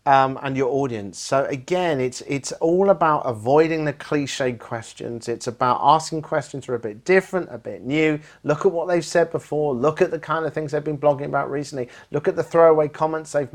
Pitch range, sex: 120-155 Hz, male